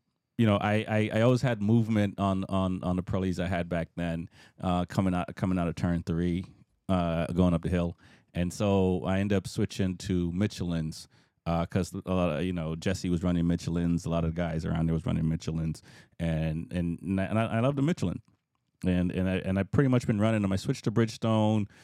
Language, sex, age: English, male, 30-49